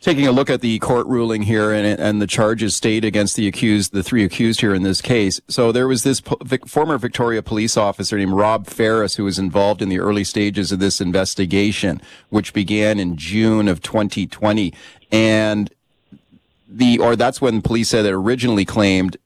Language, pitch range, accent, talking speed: English, 100-115 Hz, American, 195 wpm